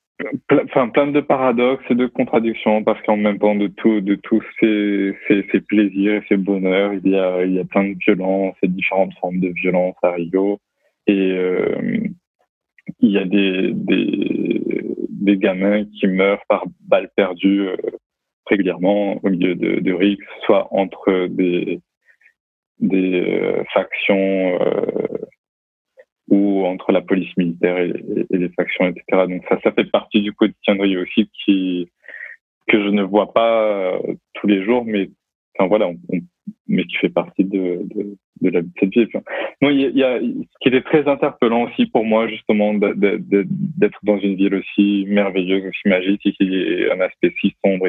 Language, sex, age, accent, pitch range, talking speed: French, male, 20-39, French, 95-120 Hz, 180 wpm